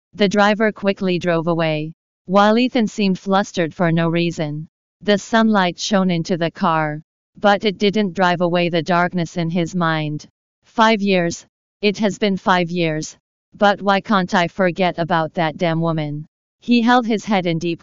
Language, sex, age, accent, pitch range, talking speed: English, female, 40-59, American, 165-205 Hz, 170 wpm